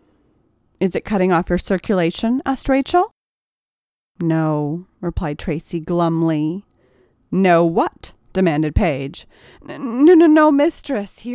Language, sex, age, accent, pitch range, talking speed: English, female, 40-59, American, 165-245 Hz, 110 wpm